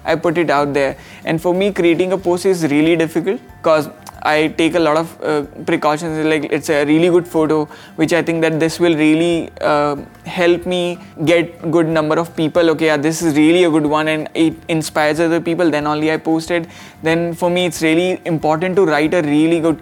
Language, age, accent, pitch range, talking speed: English, 20-39, Indian, 155-180 Hz, 215 wpm